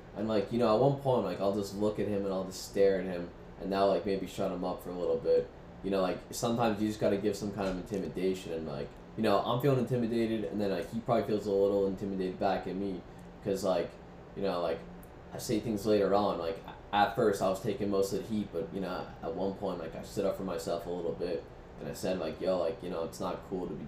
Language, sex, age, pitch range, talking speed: English, male, 10-29, 80-100 Hz, 275 wpm